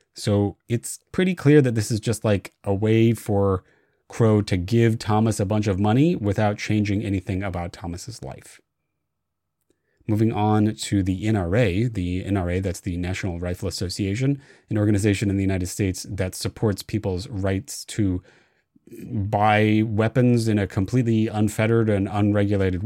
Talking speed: 150 wpm